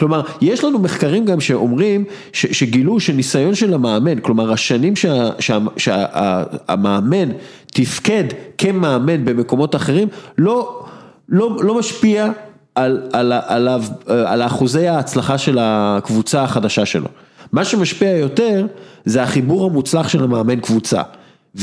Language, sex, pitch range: English, male, 130-190 Hz